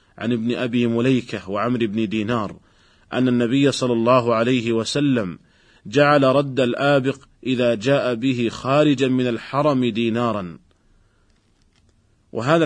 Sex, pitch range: male, 110-130 Hz